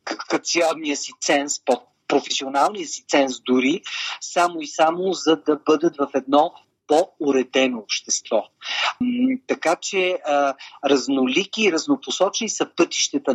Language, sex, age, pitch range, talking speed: Bulgarian, male, 40-59, 135-175 Hz, 110 wpm